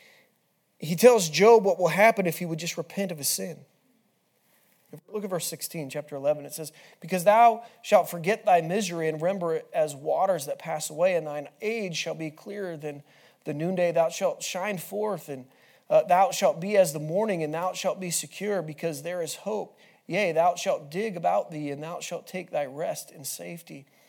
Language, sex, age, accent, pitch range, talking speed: English, male, 30-49, American, 160-200 Hz, 200 wpm